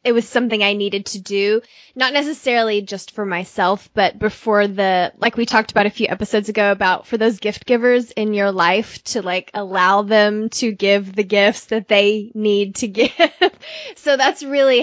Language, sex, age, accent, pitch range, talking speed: English, female, 20-39, American, 200-245 Hz, 190 wpm